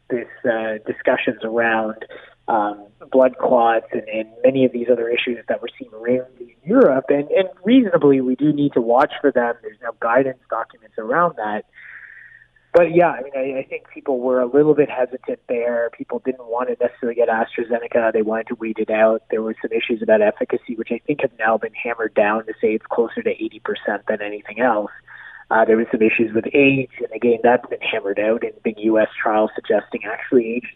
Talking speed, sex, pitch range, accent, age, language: 205 wpm, male, 110-145 Hz, American, 30-49, English